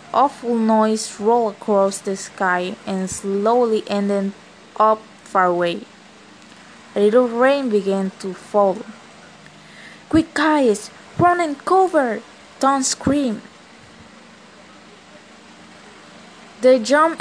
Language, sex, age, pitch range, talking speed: English, female, 20-39, 200-245 Hz, 95 wpm